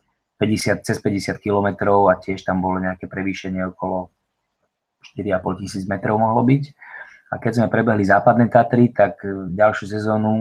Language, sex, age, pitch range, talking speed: English, male, 20-39, 100-110 Hz, 145 wpm